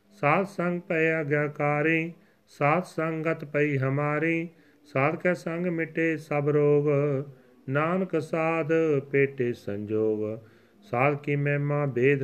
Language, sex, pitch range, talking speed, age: Punjabi, male, 130-165 Hz, 95 wpm, 40-59